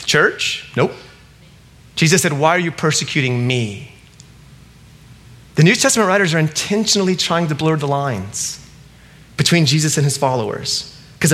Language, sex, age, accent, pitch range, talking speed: English, male, 30-49, American, 140-190 Hz, 140 wpm